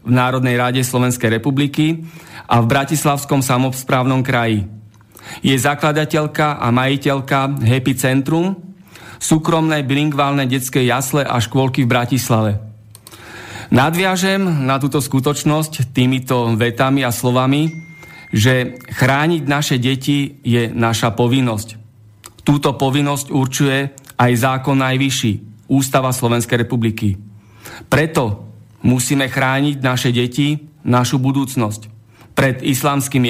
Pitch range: 125-145 Hz